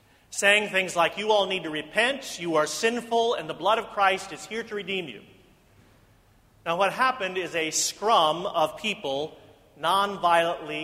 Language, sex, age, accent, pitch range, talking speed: English, male, 40-59, American, 140-190 Hz, 165 wpm